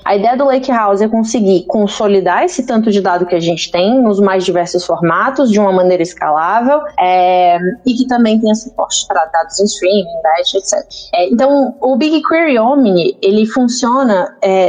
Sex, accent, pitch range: female, Brazilian, 205-260 Hz